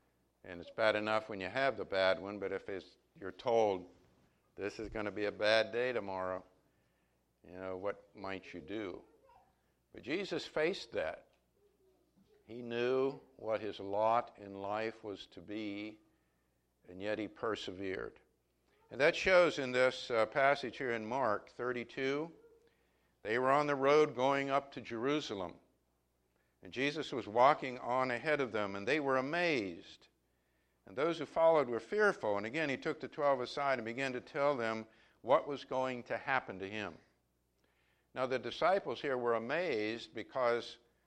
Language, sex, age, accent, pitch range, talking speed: English, male, 60-79, American, 95-135 Hz, 160 wpm